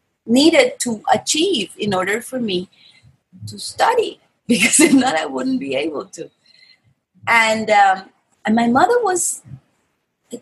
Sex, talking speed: female, 140 wpm